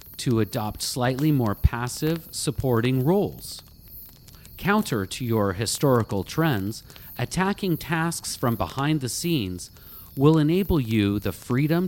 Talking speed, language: 115 wpm, English